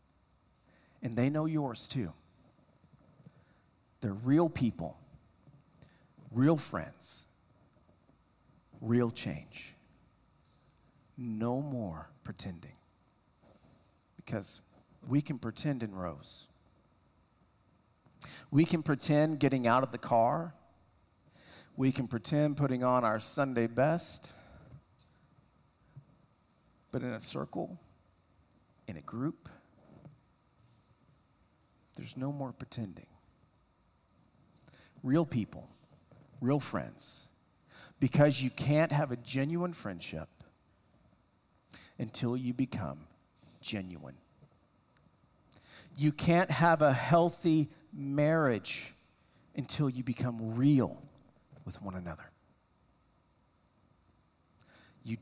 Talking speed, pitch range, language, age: 85 wpm, 100-145 Hz, English, 50-69